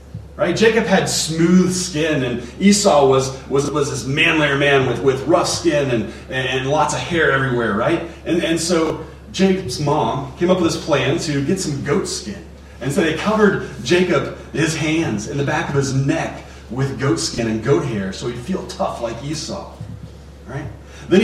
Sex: male